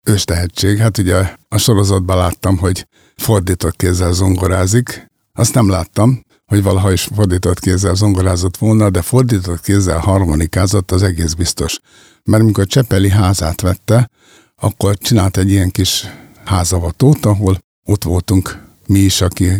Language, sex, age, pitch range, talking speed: Hungarian, male, 60-79, 90-110 Hz, 135 wpm